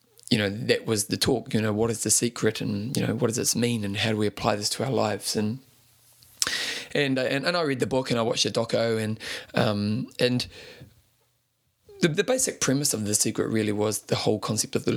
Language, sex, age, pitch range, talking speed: English, male, 20-39, 105-125 Hz, 235 wpm